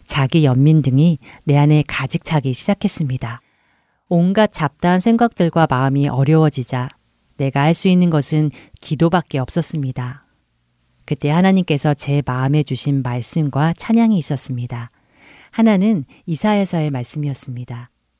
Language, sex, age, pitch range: Korean, female, 40-59, 135-175 Hz